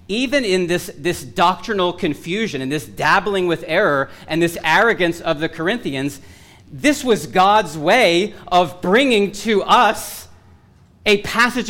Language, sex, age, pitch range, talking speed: English, male, 40-59, 140-195 Hz, 140 wpm